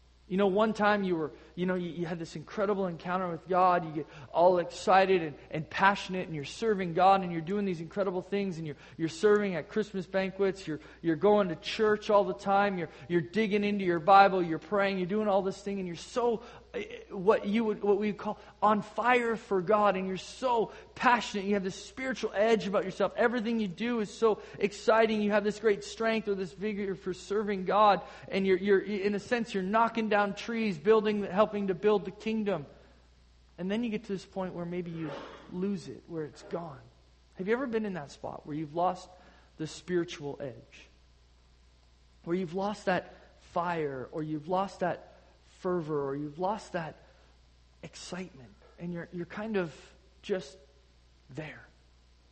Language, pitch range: English, 135-200 Hz